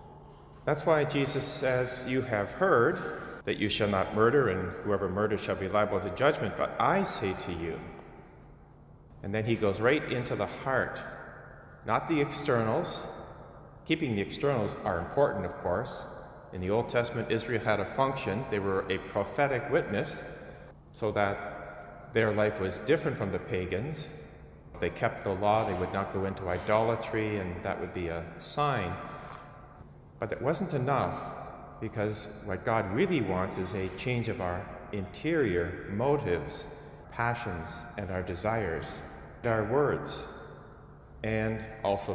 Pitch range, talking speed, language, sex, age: 95-125 Hz, 150 wpm, English, male, 40-59